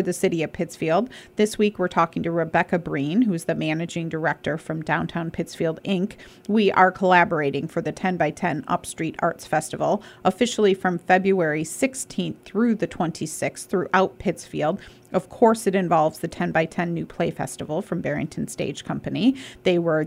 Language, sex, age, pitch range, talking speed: English, female, 30-49, 165-205 Hz, 165 wpm